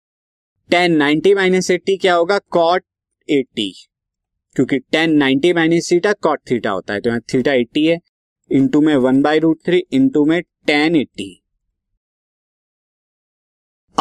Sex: male